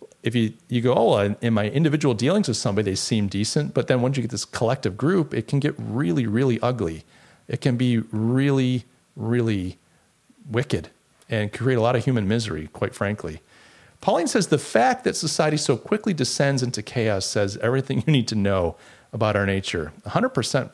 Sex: male